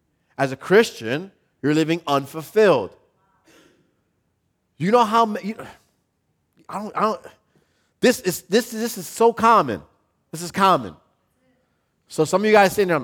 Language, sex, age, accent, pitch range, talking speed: English, male, 30-49, American, 125-190 Hz, 145 wpm